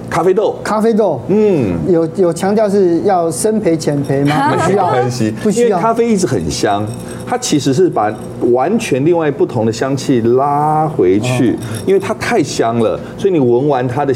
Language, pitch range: Chinese, 115-180 Hz